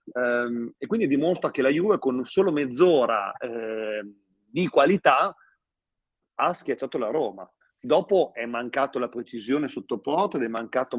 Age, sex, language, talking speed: 40-59, male, Italian, 140 wpm